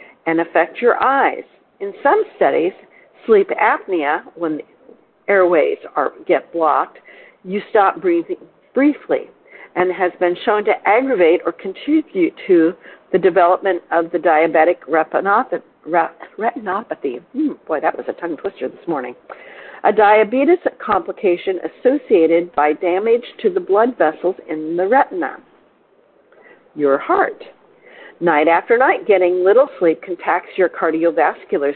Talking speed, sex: 125 wpm, female